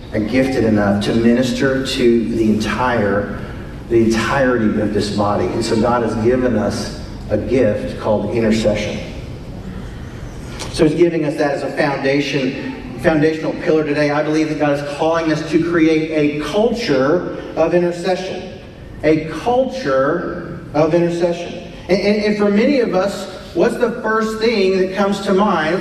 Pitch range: 125-175 Hz